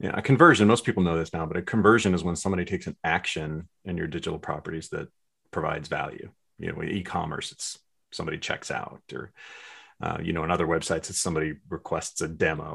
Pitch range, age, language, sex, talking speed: 85-105 Hz, 40-59, English, male, 200 wpm